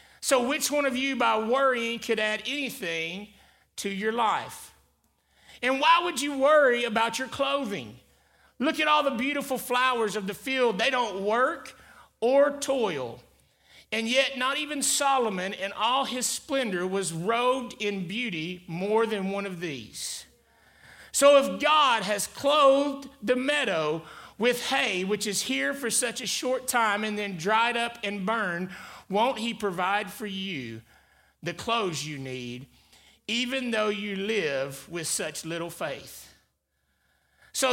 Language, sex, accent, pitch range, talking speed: English, male, American, 195-270 Hz, 150 wpm